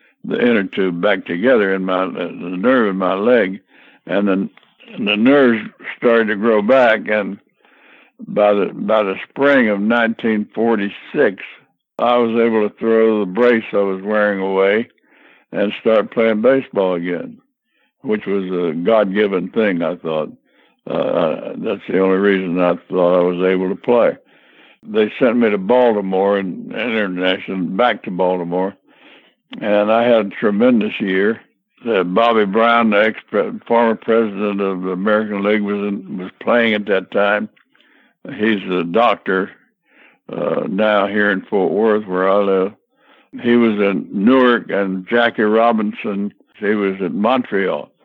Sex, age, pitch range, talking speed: male, 60-79, 95-115 Hz, 150 wpm